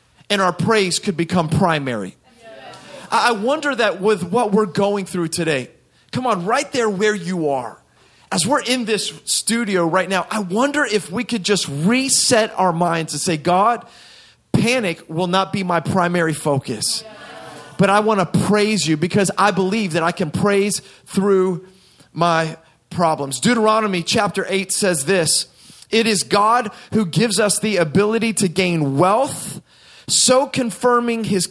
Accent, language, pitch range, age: American, English, 180-220 Hz, 30-49